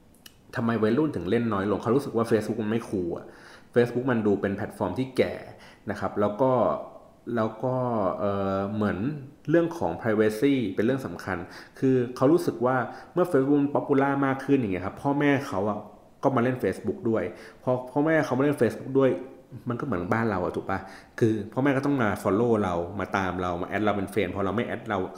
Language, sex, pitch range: Thai, male, 105-135 Hz